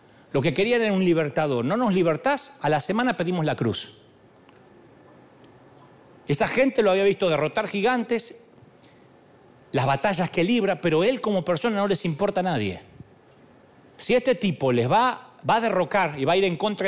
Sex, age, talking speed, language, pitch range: male, 40-59, 175 wpm, Spanish, 150-225 Hz